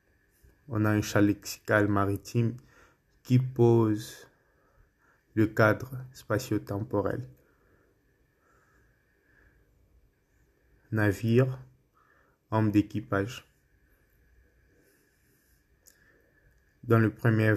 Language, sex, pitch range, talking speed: Portuguese, male, 105-125 Hz, 60 wpm